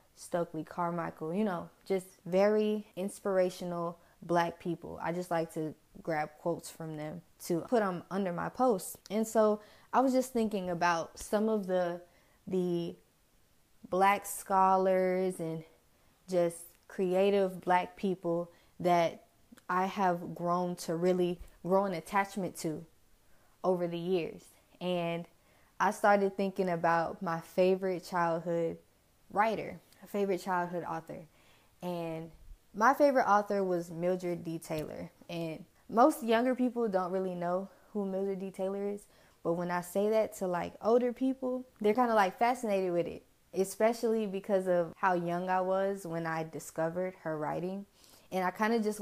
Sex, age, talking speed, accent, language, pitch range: female, 20-39, 145 wpm, American, English, 170-195 Hz